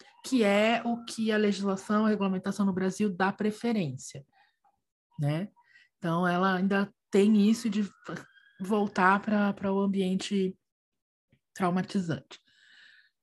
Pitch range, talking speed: 190-240 Hz, 115 wpm